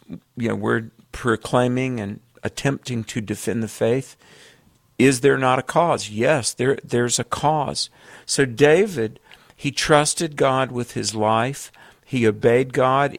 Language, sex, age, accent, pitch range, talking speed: English, male, 50-69, American, 115-140 Hz, 140 wpm